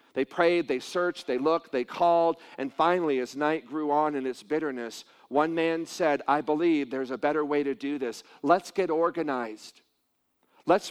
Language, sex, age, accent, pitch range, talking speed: English, male, 50-69, American, 145-170 Hz, 180 wpm